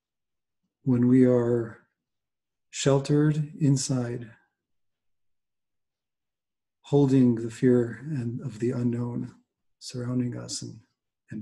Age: 40-59